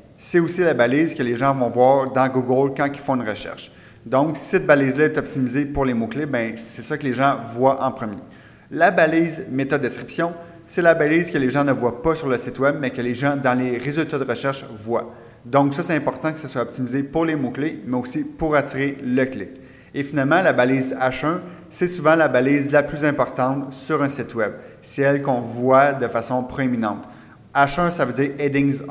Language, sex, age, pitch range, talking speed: French, male, 30-49, 125-150 Hz, 215 wpm